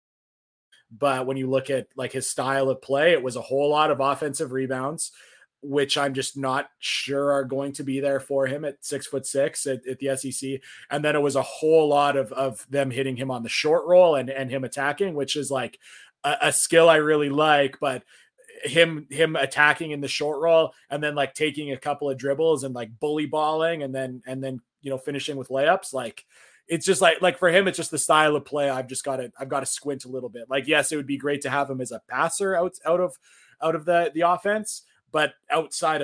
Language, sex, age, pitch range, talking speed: English, male, 20-39, 135-150 Hz, 235 wpm